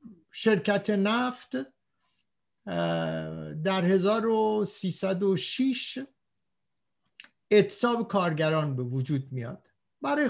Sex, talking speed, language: male, 60 wpm, Persian